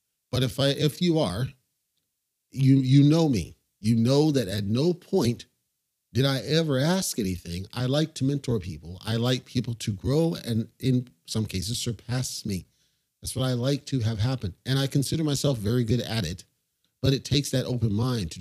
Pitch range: 110-140 Hz